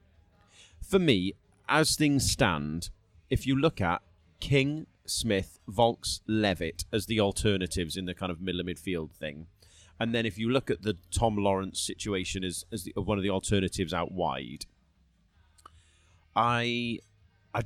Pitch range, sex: 90-115 Hz, male